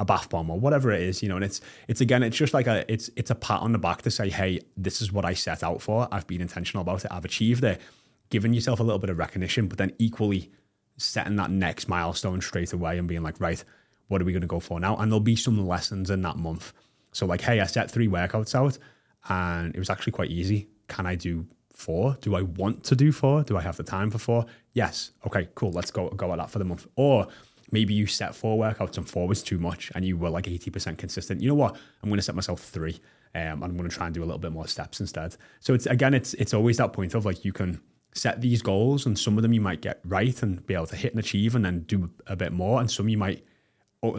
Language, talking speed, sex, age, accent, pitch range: English, 275 wpm, male, 20-39, British, 90-115 Hz